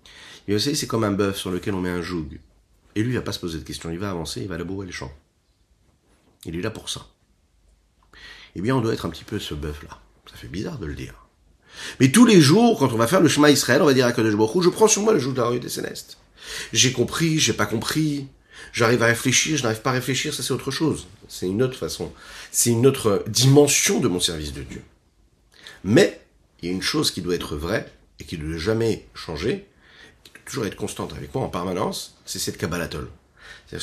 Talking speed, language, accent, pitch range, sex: 250 wpm, French, French, 85-130 Hz, male